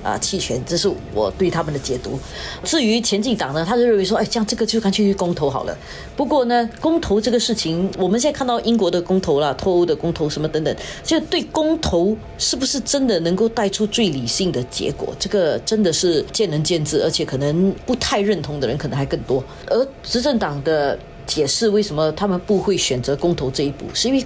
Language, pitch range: Chinese, 155-220 Hz